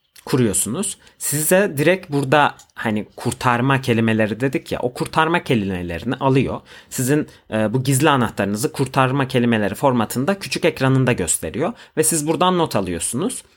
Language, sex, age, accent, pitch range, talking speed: Turkish, male, 30-49, native, 115-150 Hz, 130 wpm